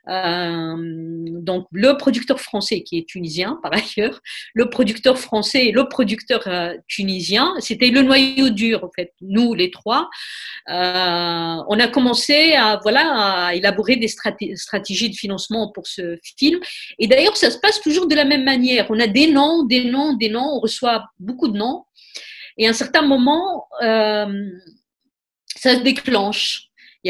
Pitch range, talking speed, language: 205-270 Hz, 165 wpm, French